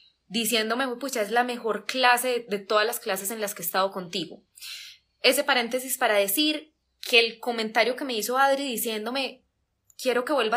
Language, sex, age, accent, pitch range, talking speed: Spanish, female, 10-29, Colombian, 220-275 Hz, 180 wpm